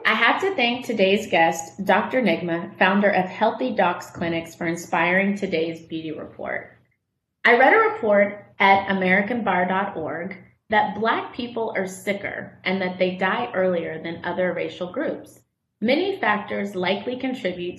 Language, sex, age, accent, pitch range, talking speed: English, female, 30-49, American, 175-210 Hz, 140 wpm